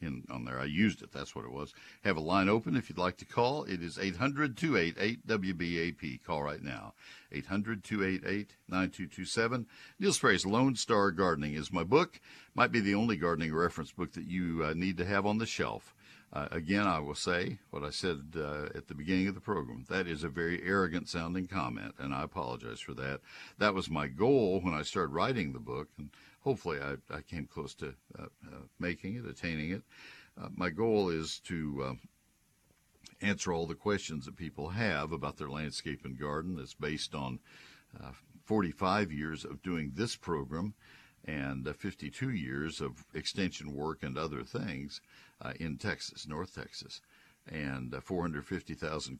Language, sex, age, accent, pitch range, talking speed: English, male, 60-79, American, 75-95 Hz, 185 wpm